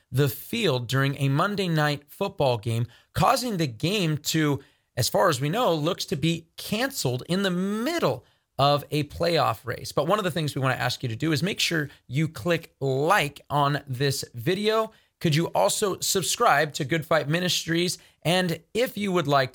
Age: 30-49